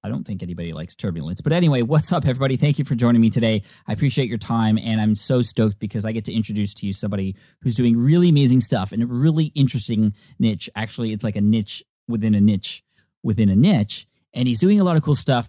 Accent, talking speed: American, 240 wpm